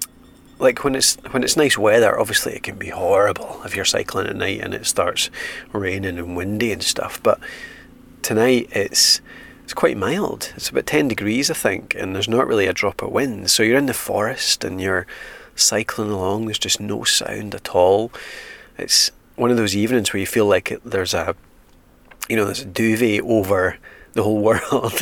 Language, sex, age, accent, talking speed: English, male, 30-49, British, 190 wpm